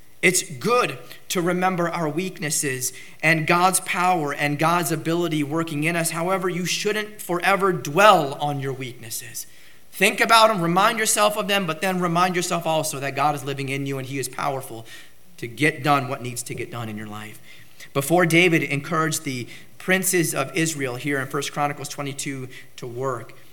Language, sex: English, male